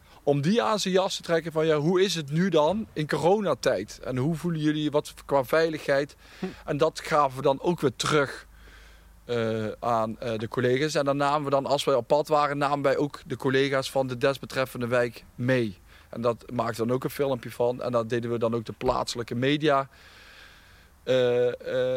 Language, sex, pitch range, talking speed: Dutch, male, 120-155 Hz, 205 wpm